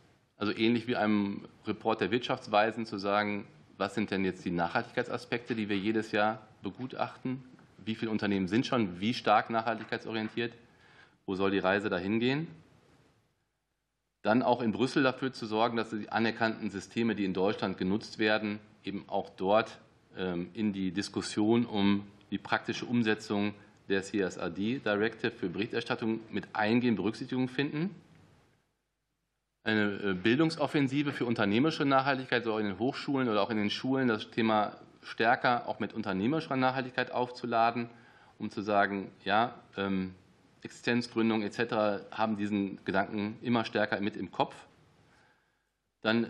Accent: German